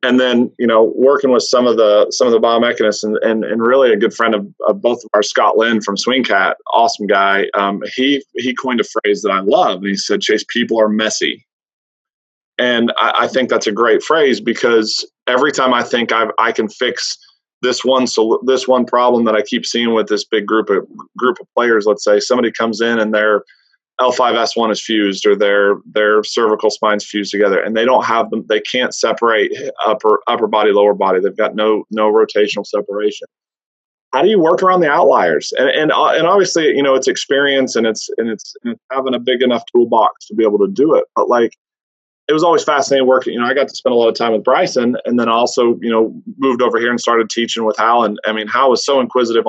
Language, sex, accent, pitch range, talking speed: English, male, American, 110-135 Hz, 230 wpm